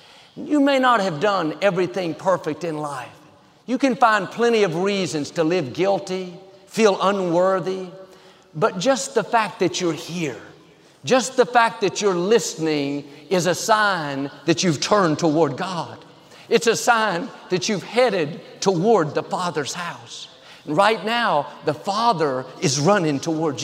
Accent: American